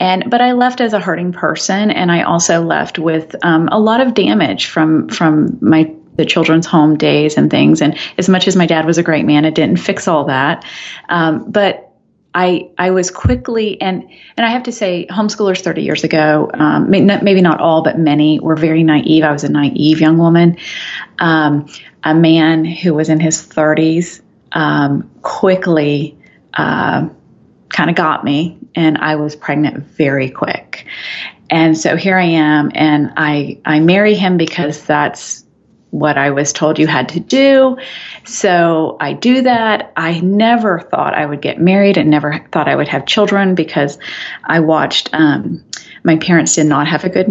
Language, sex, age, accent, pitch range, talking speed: English, female, 30-49, American, 155-185 Hz, 180 wpm